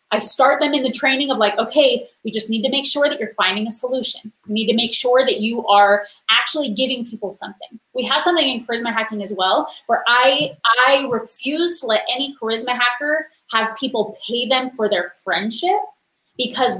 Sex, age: female, 20-39